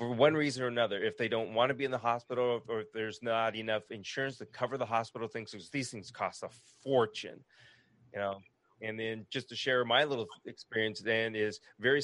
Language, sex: English, male